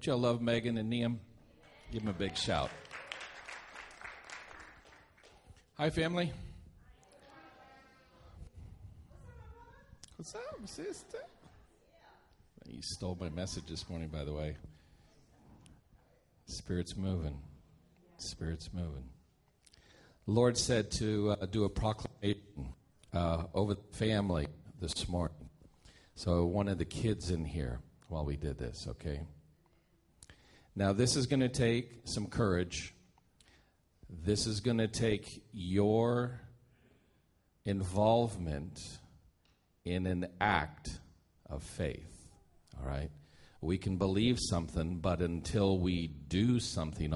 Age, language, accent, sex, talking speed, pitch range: 50-69, English, American, male, 110 wpm, 80-105 Hz